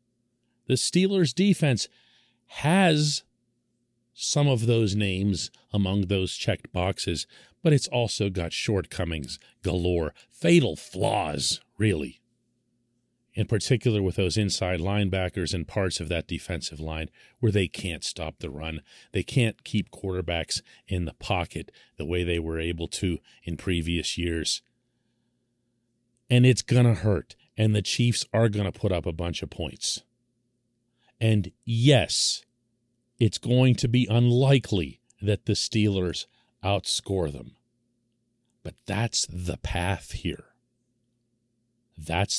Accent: American